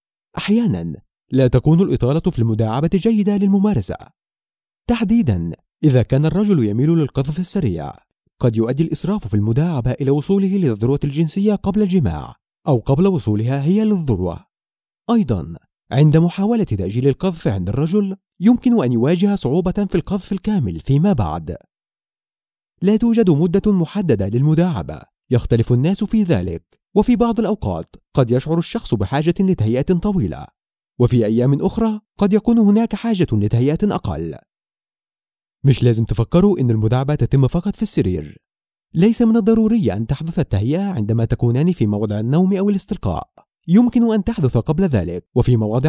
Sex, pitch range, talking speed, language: male, 120-200 Hz, 135 wpm, Arabic